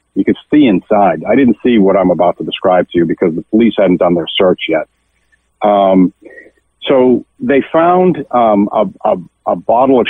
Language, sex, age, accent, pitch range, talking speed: English, male, 50-69, American, 95-130 Hz, 185 wpm